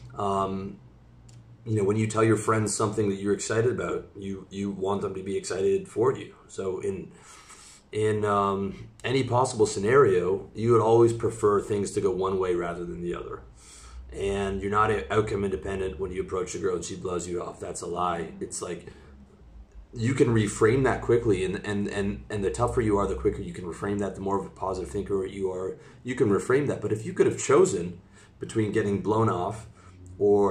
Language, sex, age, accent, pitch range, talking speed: English, male, 30-49, American, 95-115 Hz, 205 wpm